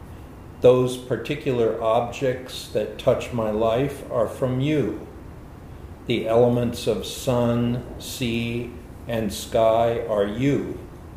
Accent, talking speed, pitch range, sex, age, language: American, 100 wpm, 105-125 Hz, male, 50-69, English